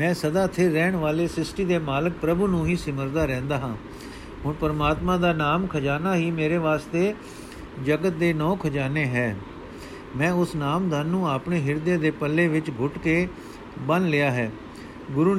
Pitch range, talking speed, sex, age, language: 150-175 Hz, 170 wpm, male, 50-69, Punjabi